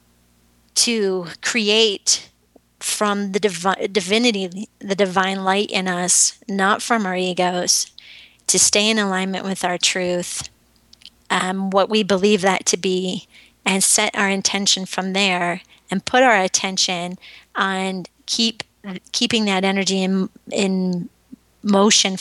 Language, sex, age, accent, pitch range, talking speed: English, female, 30-49, American, 180-205 Hz, 125 wpm